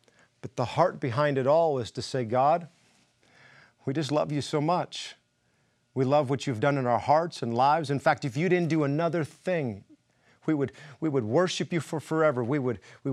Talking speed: 195 wpm